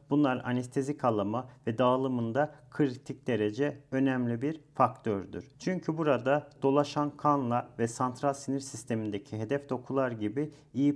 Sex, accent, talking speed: male, native, 120 wpm